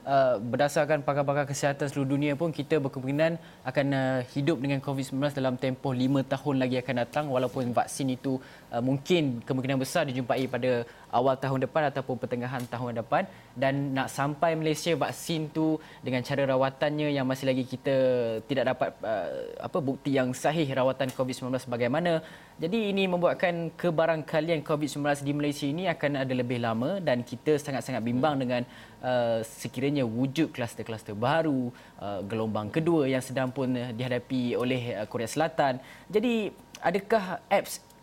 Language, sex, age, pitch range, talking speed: Malay, male, 20-39, 125-155 Hz, 145 wpm